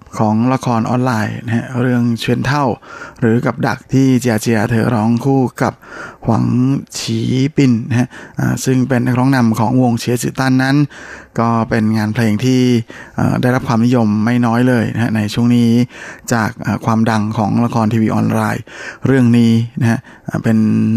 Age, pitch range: 20-39, 110-125 Hz